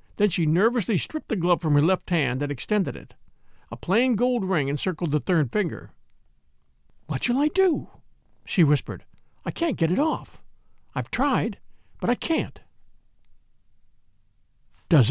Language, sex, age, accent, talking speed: English, male, 50-69, American, 150 wpm